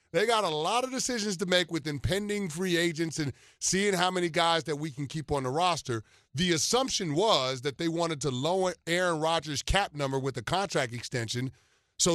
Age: 30-49